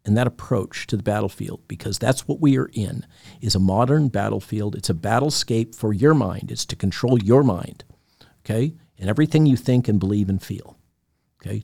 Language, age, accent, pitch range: English, 50-69, American, 115-150 Hz